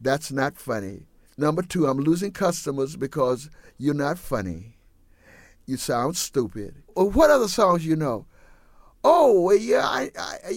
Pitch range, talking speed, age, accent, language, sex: 125-185 Hz, 140 wpm, 50-69, American, English, male